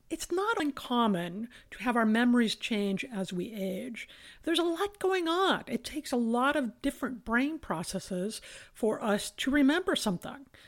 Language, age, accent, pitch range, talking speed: English, 50-69, American, 210-285 Hz, 165 wpm